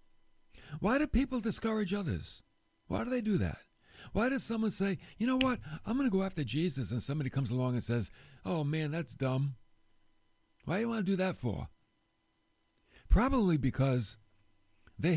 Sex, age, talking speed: male, 60-79, 175 wpm